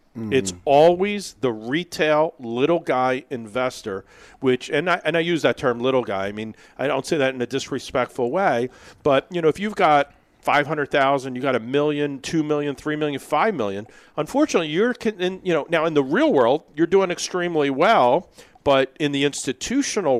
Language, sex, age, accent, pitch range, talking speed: English, male, 40-59, American, 130-170 Hz, 185 wpm